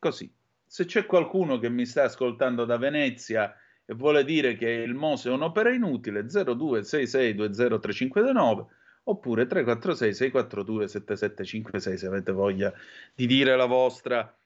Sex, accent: male, native